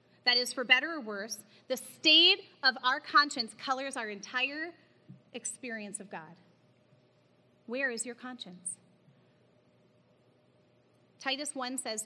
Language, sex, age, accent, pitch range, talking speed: English, female, 30-49, American, 230-315 Hz, 120 wpm